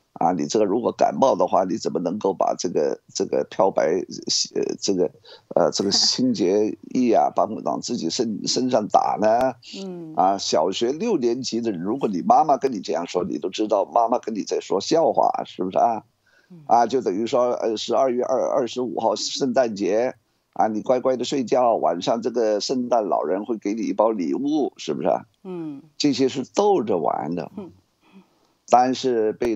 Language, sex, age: Chinese, male, 50-69